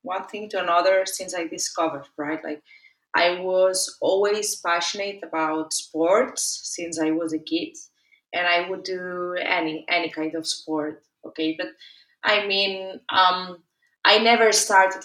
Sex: female